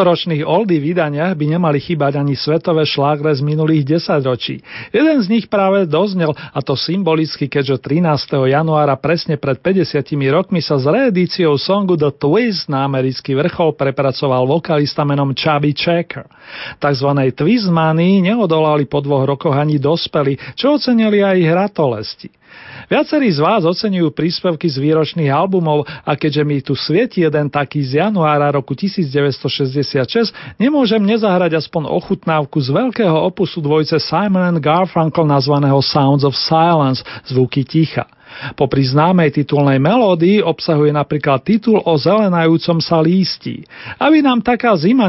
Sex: male